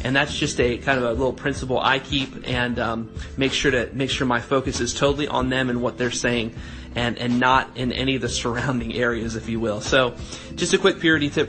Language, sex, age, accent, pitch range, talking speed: English, male, 30-49, American, 115-130 Hz, 240 wpm